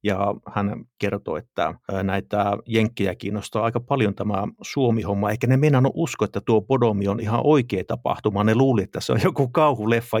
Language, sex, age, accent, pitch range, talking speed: Finnish, male, 50-69, native, 100-115 Hz, 175 wpm